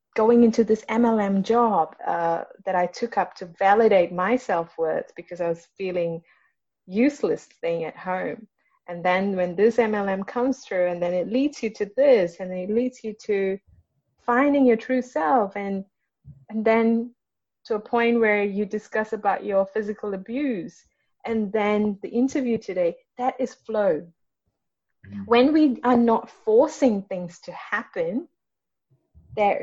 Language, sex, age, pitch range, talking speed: English, female, 30-49, 185-235 Hz, 155 wpm